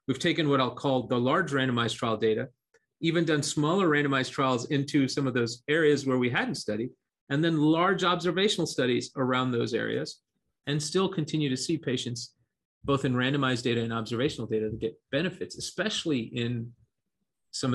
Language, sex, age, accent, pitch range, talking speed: English, male, 40-59, American, 120-150 Hz, 170 wpm